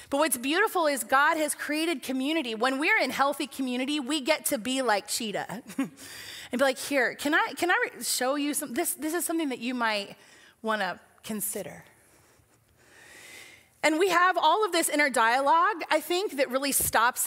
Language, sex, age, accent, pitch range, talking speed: English, female, 30-49, American, 245-320 Hz, 180 wpm